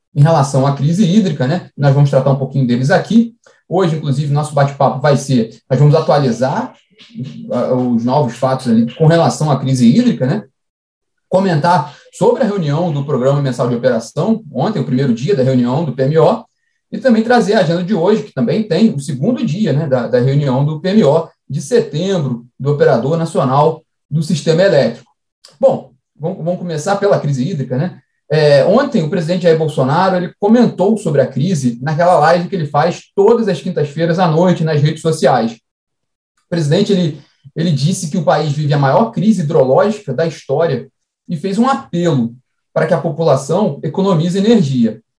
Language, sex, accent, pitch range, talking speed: Portuguese, male, Brazilian, 140-195 Hz, 175 wpm